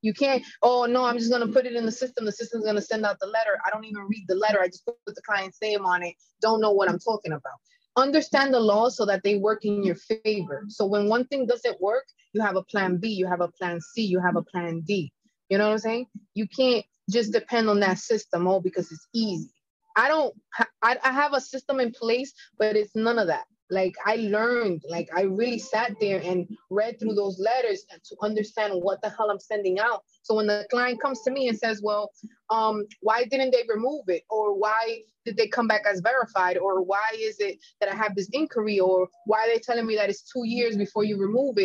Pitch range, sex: 200-255 Hz, female